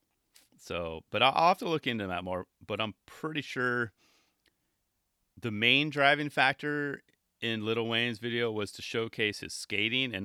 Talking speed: 160 wpm